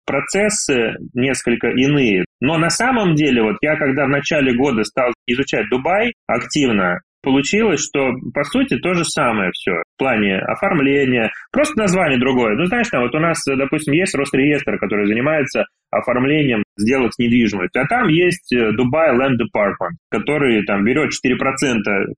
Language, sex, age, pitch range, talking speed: Russian, male, 20-39, 120-170 Hz, 150 wpm